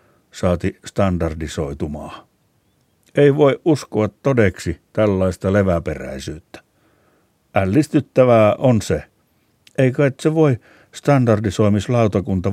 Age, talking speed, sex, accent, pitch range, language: 60-79, 75 wpm, male, native, 90-115 Hz, Finnish